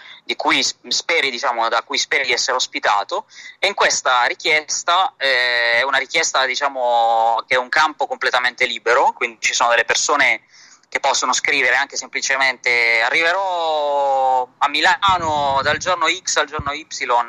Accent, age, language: native, 20-39, Italian